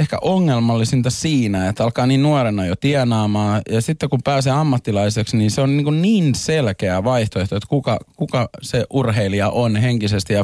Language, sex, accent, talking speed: Finnish, male, native, 170 wpm